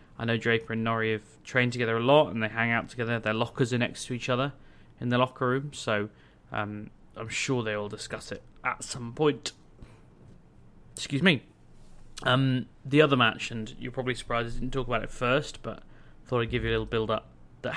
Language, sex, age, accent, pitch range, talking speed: English, male, 30-49, British, 110-140 Hz, 215 wpm